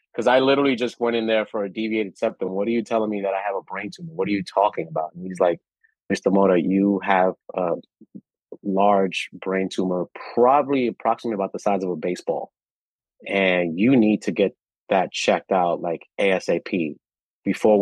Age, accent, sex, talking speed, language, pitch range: 30-49, American, male, 190 wpm, English, 95-115 Hz